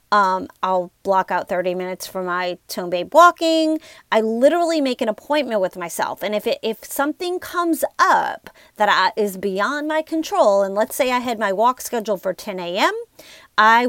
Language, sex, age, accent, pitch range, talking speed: English, female, 40-59, American, 210-300 Hz, 175 wpm